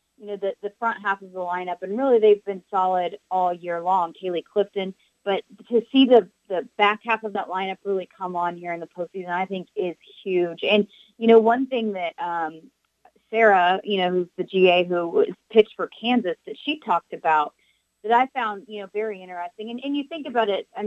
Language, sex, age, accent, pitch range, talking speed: English, female, 30-49, American, 185-230 Hz, 220 wpm